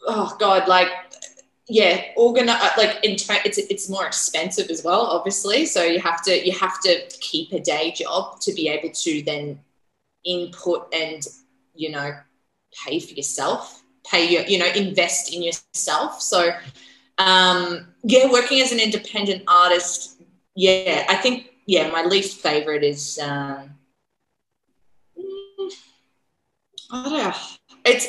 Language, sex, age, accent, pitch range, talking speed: English, female, 20-39, Australian, 170-215 Hz, 135 wpm